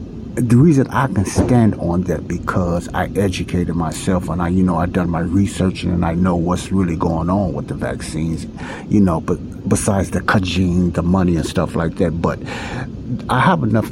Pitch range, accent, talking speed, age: 90-110 Hz, American, 195 wpm, 60-79